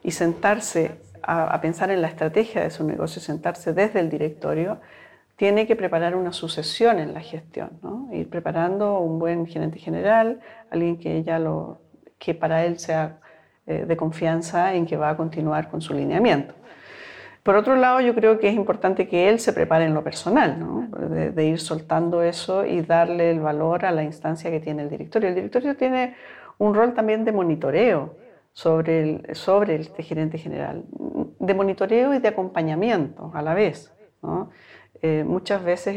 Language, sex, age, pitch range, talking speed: Spanish, female, 40-59, 155-195 Hz, 175 wpm